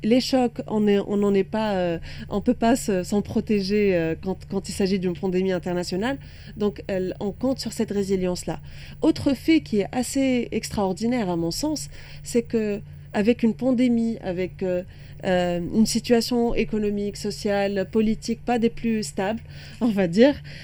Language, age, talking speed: Arabic, 30-49, 165 wpm